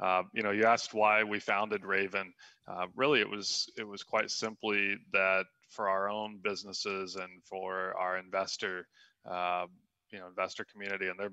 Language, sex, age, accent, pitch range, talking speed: English, male, 20-39, American, 95-105 Hz, 175 wpm